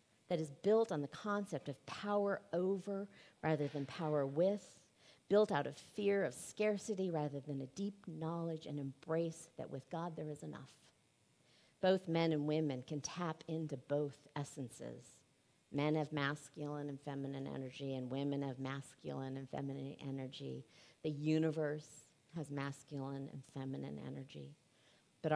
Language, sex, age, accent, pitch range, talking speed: English, female, 40-59, American, 135-160 Hz, 145 wpm